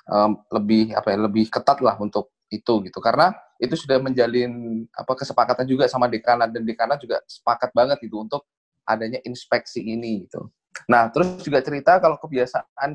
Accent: native